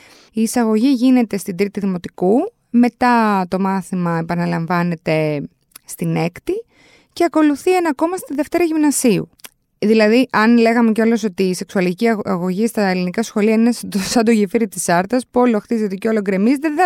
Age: 20-39